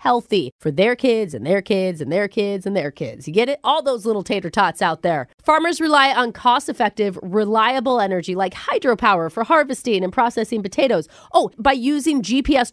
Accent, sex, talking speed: American, female, 190 wpm